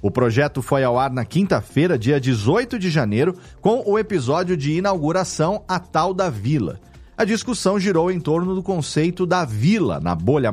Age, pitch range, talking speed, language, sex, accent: 40-59, 120-185 Hz, 175 wpm, Portuguese, male, Brazilian